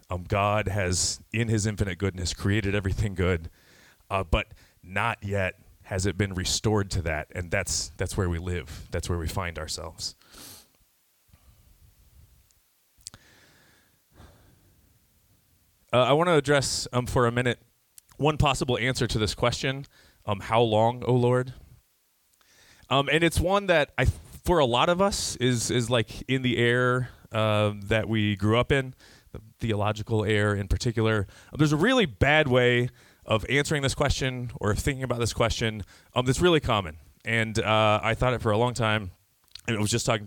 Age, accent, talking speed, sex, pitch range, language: 30-49, American, 170 wpm, male, 95-120 Hz, English